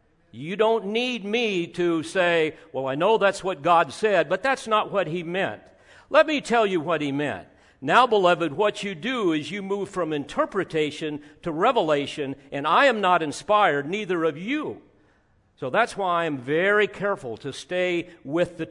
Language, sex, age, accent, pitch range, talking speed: English, male, 50-69, American, 150-195 Hz, 180 wpm